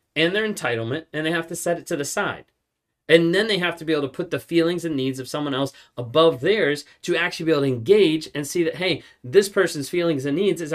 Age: 30-49